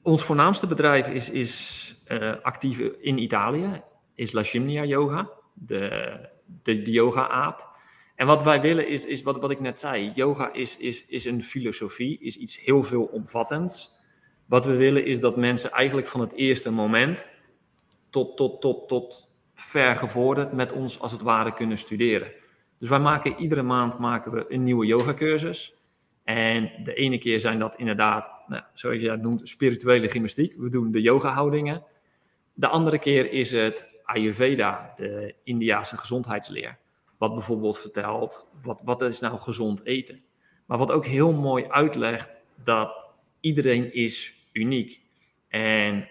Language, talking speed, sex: English, 160 wpm, male